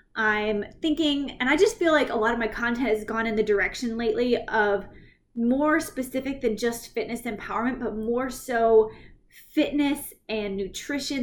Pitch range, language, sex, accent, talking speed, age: 215-265 Hz, English, female, American, 165 wpm, 20-39